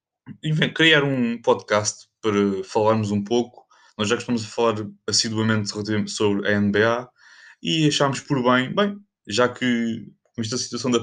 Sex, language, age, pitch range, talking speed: male, Portuguese, 20-39, 110-130 Hz, 145 wpm